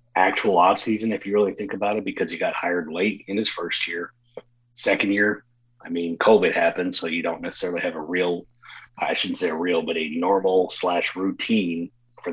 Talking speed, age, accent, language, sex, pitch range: 200 wpm, 30-49, American, English, male, 85-120 Hz